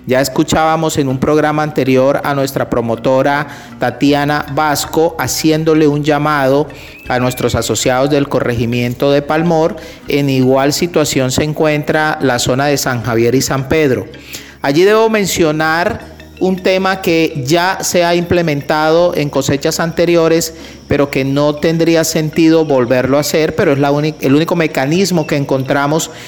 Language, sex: Spanish, male